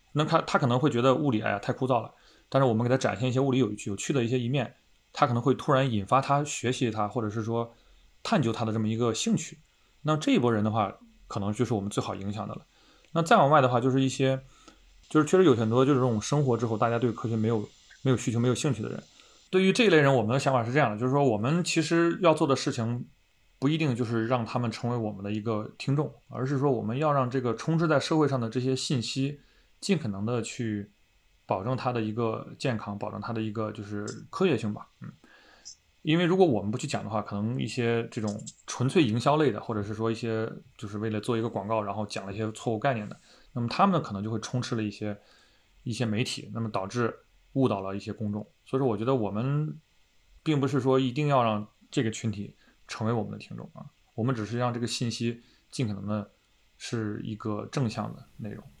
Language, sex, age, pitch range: English, male, 20-39, 110-135 Hz